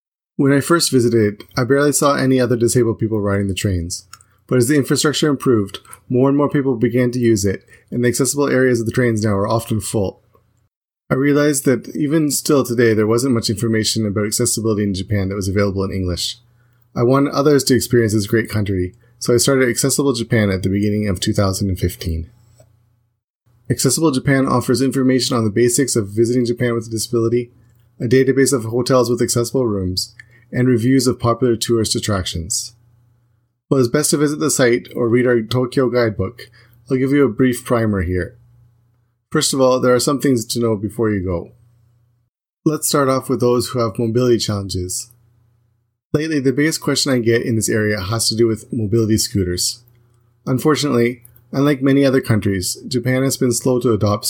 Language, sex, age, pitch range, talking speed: English, male, 30-49, 110-130 Hz, 185 wpm